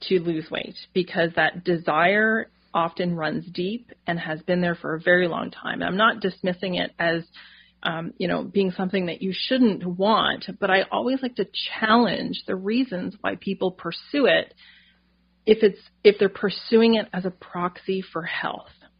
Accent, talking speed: American, 175 wpm